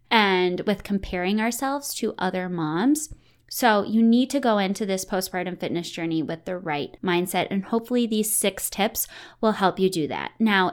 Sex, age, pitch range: female, 20-39, 200-255 Hz